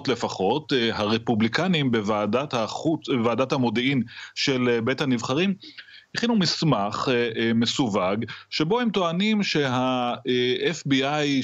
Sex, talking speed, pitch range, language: male, 85 wpm, 105-135 Hz, Hebrew